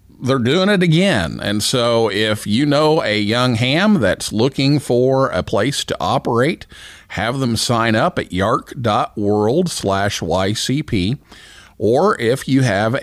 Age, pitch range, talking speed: 50-69, 105-145 Hz, 145 wpm